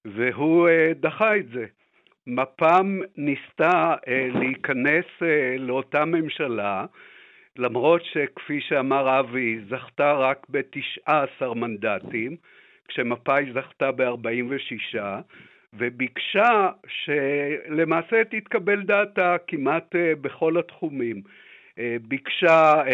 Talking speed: 80 wpm